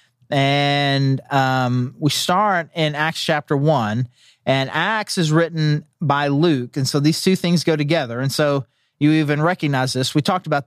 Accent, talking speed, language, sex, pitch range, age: American, 170 wpm, English, male, 135-160 Hz, 30-49